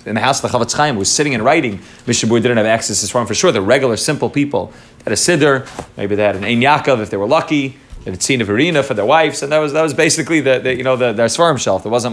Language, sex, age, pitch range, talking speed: English, male, 30-49, 115-155 Hz, 290 wpm